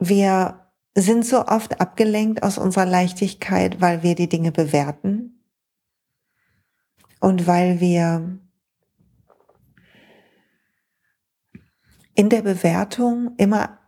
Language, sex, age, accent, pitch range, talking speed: German, female, 40-59, German, 190-230 Hz, 85 wpm